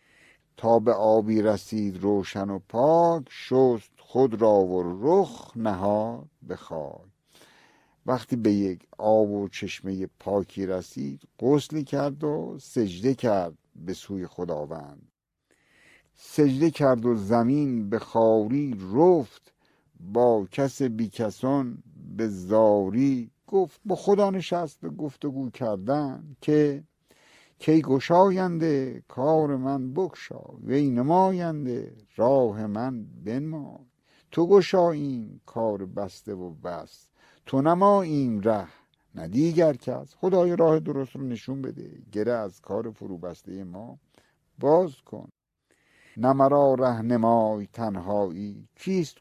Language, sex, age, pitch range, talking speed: Persian, male, 60-79, 105-145 Hz, 115 wpm